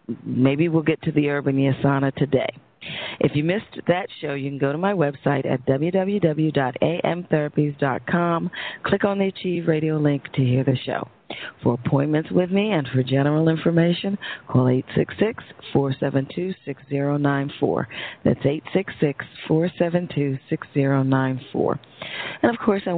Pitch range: 135-160 Hz